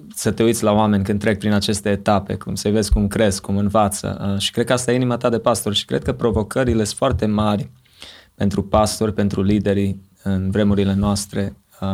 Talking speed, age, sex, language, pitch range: 210 wpm, 20-39, male, Romanian, 100-110 Hz